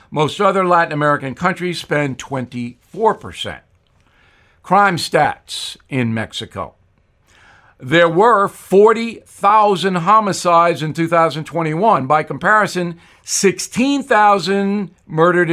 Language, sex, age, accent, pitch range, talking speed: English, male, 60-79, American, 145-195 Hz, 80 wpm